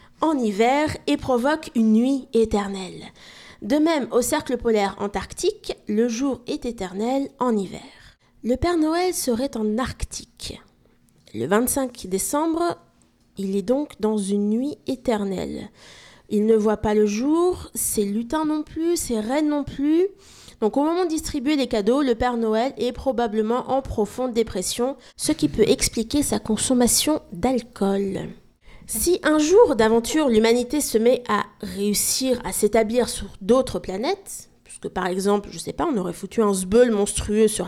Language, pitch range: French, 210-275 Hz